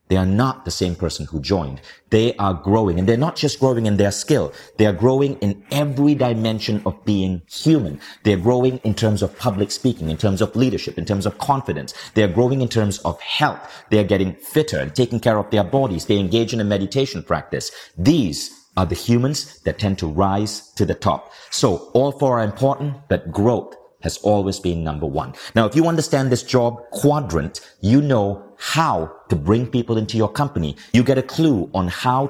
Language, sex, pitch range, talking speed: English, male, 95-125 Hz, 205 wpm